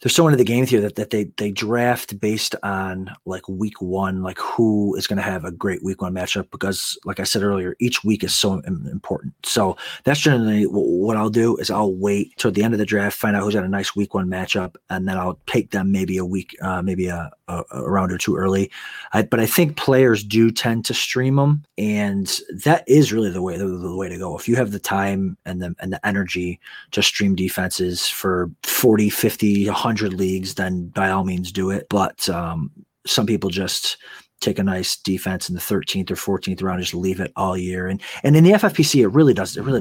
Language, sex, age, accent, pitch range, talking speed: English, male, 30-49, American, 95-115 Hz, 235 wpm